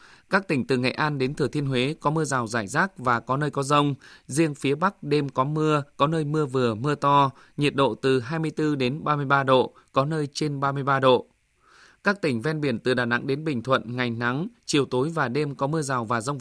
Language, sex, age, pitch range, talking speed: Vietnamese, male, 20-39, 130-150 Hz, 235 wpm